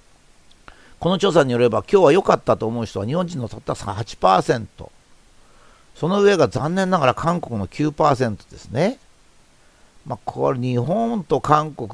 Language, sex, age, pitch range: Japanese, male, 50-69, 110-155 Hz